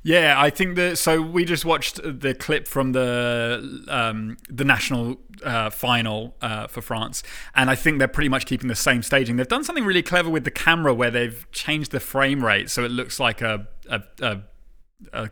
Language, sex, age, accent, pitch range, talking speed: English, male, 20-39, British, 115-145 Hz, 205 wpm